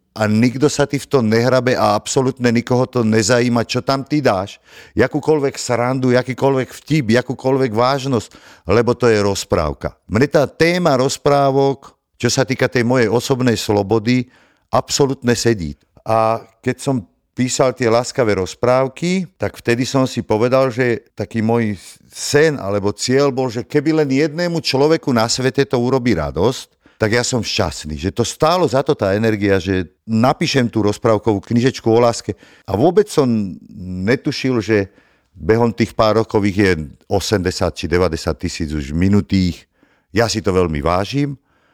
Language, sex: Slovak, male